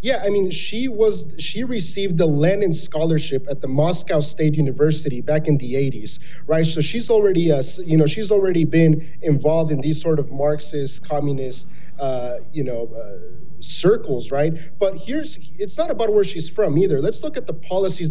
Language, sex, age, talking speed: English, male, 30-49, 185 wpm